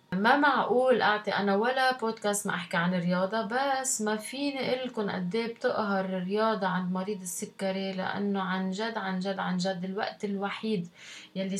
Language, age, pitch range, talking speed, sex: Arabic, 20-39, 180-210 Hz, 160 wpm, female